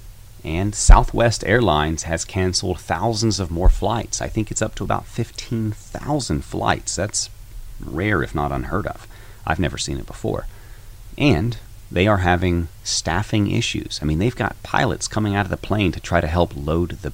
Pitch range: 75-105 Hz